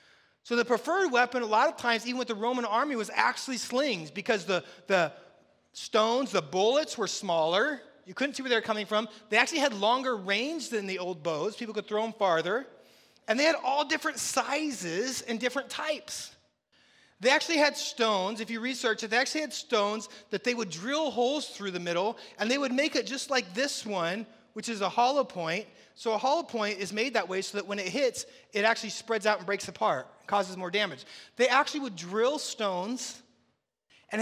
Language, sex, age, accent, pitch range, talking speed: English, male, 30-49, American, 205-260 Hz, 205 wpm